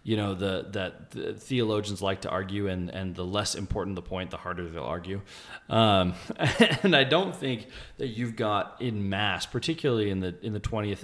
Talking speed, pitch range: 195 wpm, 90-120 Hz